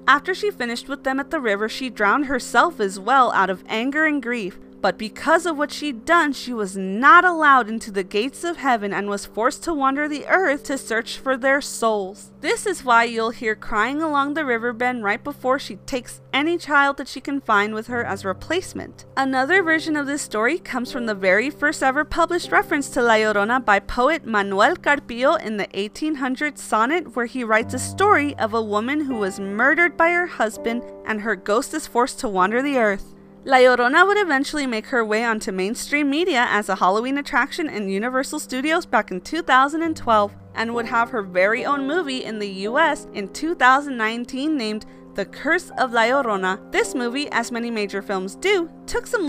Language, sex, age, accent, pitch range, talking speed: English, female, 20-39, American, 215-295 Hz, 200 wpm